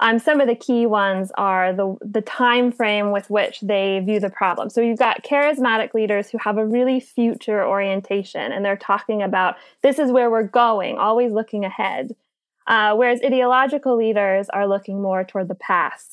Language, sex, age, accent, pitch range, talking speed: English, female, 10-29, American, 195-235 Hz, 185 wpm